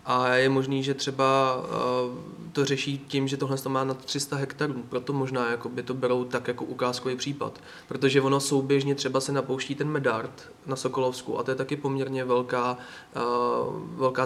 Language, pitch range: Czech, 125-140 Hz